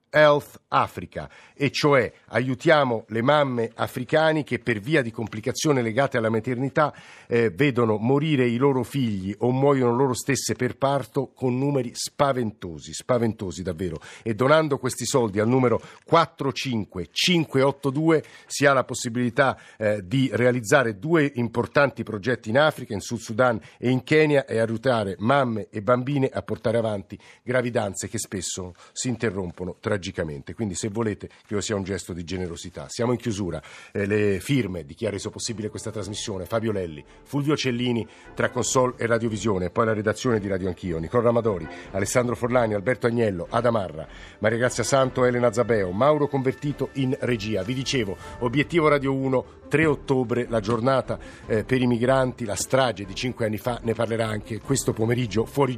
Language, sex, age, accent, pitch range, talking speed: Italian, male, 50-69, native, 110-135 Hz, 160 wpm